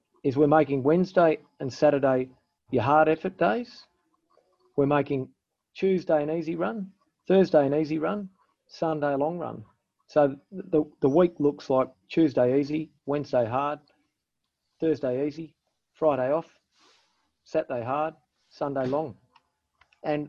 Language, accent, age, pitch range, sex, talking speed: English, Australian, 40-59, 130-160 Hz, male, 125 wpm